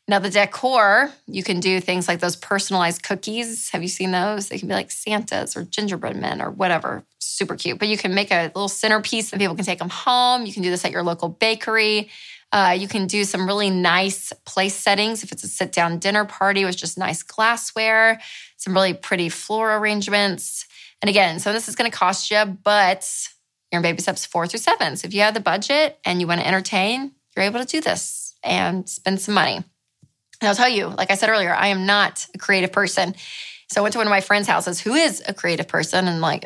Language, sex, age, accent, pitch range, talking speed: English, female, 20-39, American, 185-230 Hz, 225 wpm